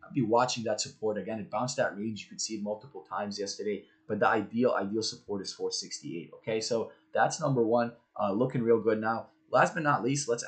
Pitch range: 110-130 Hz